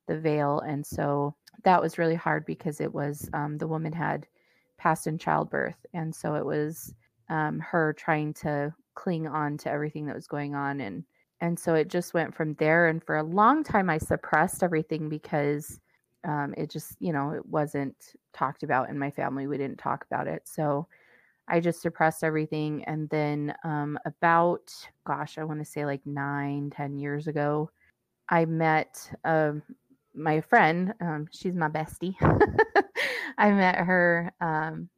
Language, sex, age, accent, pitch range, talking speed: English, female, 30-49, American, 145-170 Hz, 170 wpm